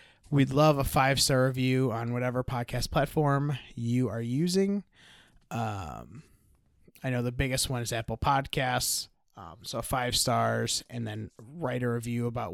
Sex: male